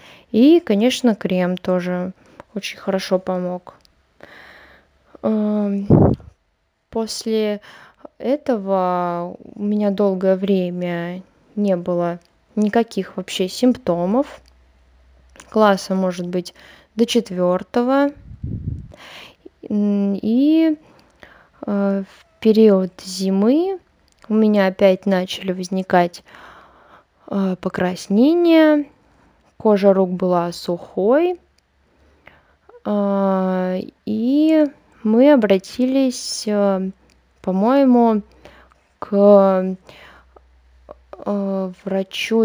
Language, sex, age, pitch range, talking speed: Russian, female, 20-39, 185-220 Hz, 60 wpm